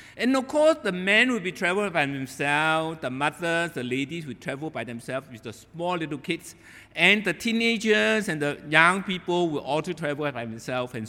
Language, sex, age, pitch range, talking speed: English, male, 60-79, 135-215 Hz, 195 wpm